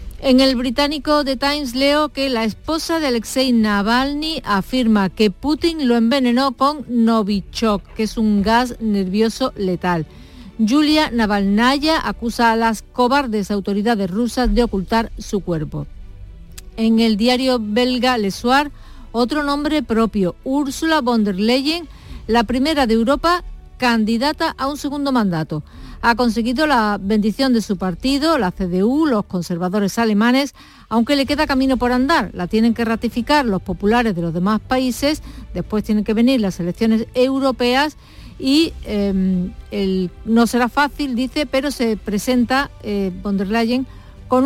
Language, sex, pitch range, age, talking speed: Spanish, female, 210-270 Hz, 50-69, 145 wpm